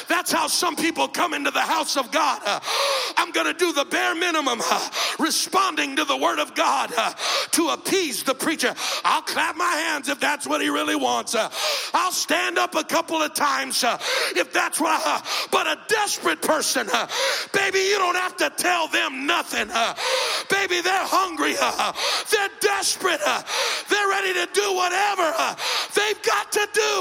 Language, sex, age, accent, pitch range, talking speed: English, male, 50-69, American, 315-390 Hz, 190 wpm